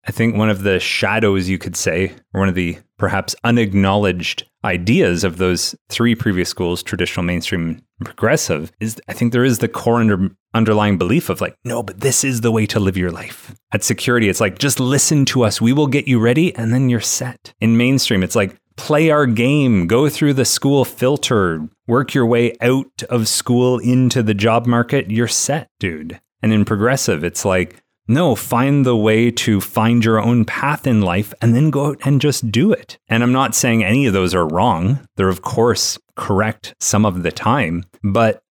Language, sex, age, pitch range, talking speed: English, male, 30-49, 100-120 Hz, 205 wpm